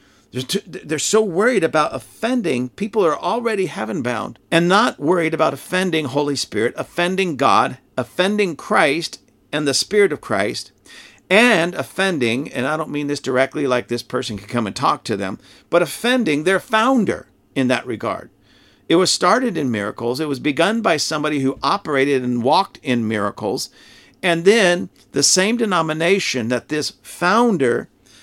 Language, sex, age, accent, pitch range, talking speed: English, male, 50-69, American, 130-180 Hz, 155 wpm